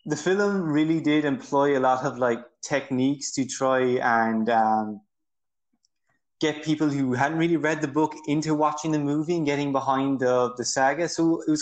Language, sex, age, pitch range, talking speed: English, male, 20-39, 115-150 Hz, 180 wpm